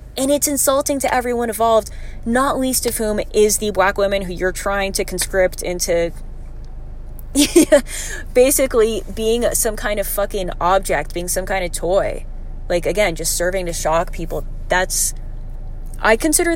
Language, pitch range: English, 170-215 Hz